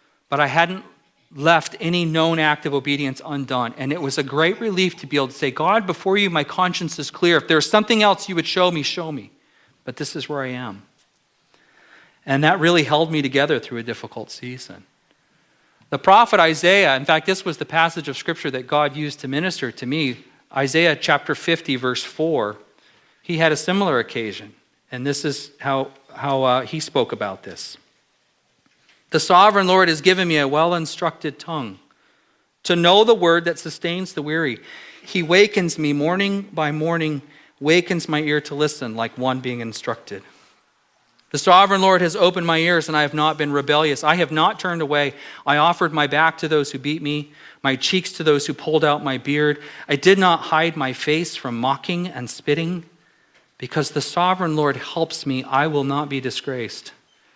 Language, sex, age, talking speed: English, male, 40-59, 190 wpm